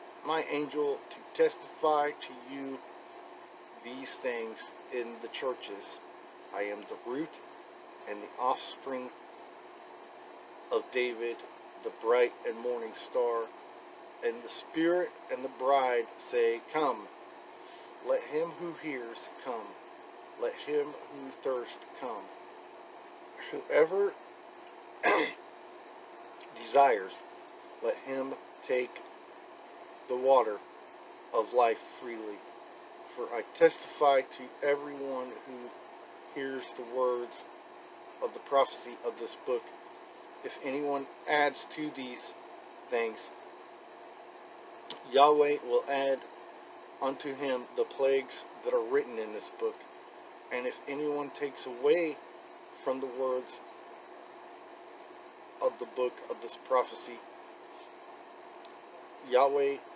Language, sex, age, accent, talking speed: English, male, 50-69, American, 100 wpm